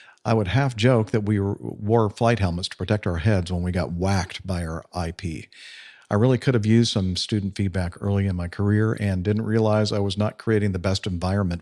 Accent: American